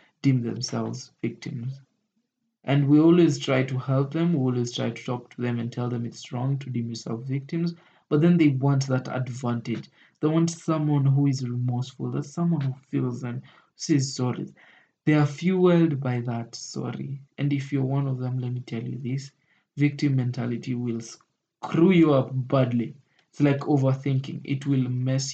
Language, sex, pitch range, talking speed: English, male, 125-155 Hz, 180 wpm